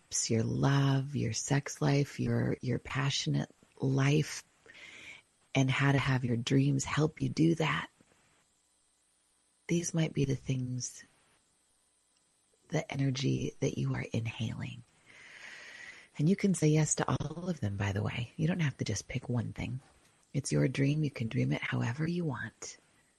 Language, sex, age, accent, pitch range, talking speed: English, female, 30-49, American, 125-155 Hz, 155 wpm